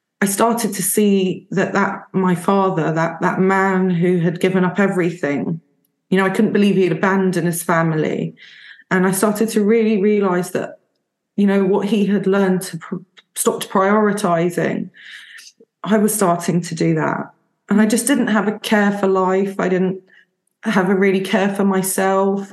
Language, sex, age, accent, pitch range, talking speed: English, female, 20-39, British, 190-230 Hz, 170 wpm